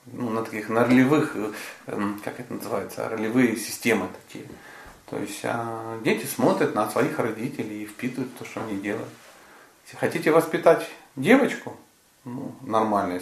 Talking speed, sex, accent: 135 wpm, male, native